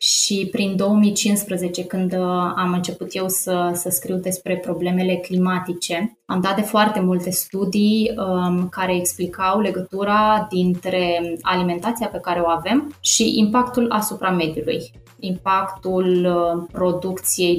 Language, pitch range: Romanian, 175-195 Hz